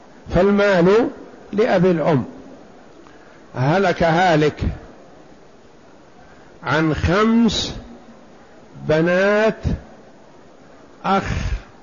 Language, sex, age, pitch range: Arabic, male, 60-79, 155-195 Hz